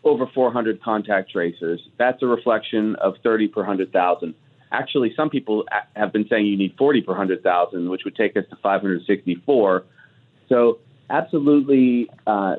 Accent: American